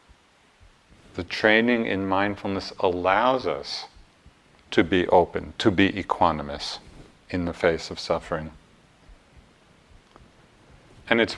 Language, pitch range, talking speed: English, 90-105 Hz, 100 wpm